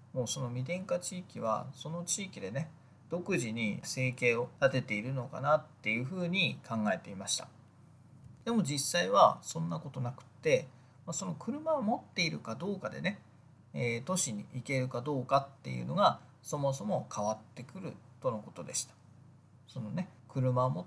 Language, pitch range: Japanese, 125-155 Hz